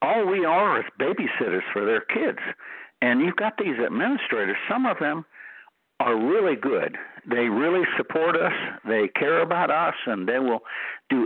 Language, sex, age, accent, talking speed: English, male, 60-79, American, 170 wpm